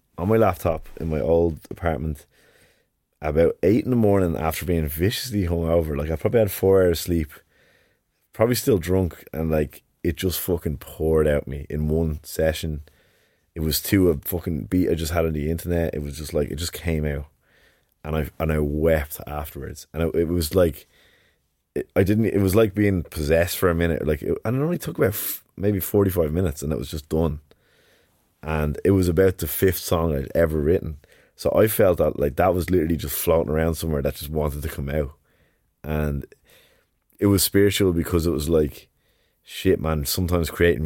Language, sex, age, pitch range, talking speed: English, male, 20-39, 75-90 Hz, 190 wpm